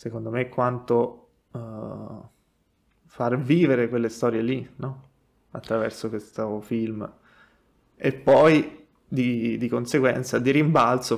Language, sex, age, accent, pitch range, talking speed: Italian, male, 20-39, native, 115-130 Hz, 105 wpm